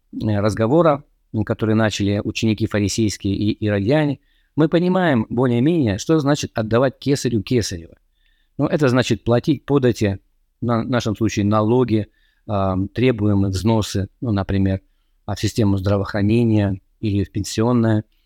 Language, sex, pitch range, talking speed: Russian, male, 105-125 Hz, 115 wpm